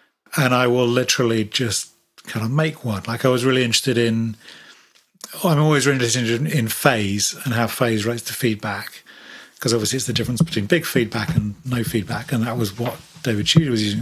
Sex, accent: male, British